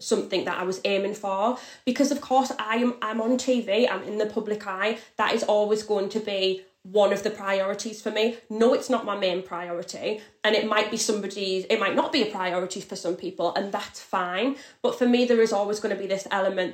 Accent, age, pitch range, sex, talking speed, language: British, 20-39, 190-235 Hz, female, 235 wpm, English